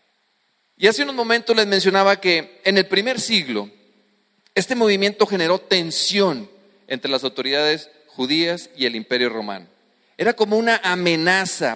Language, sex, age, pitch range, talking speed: English, male, 40-59, 155-210 Hz, 140 wpm